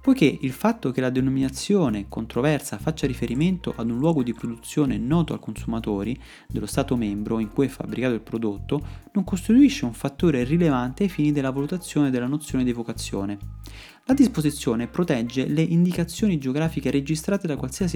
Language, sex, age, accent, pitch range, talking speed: Italian, male, 30-49, native, 120-175 Hz, 160 wpm